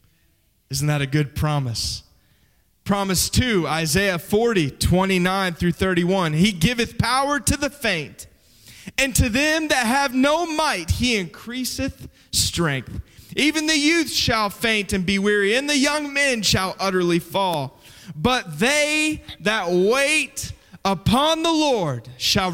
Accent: American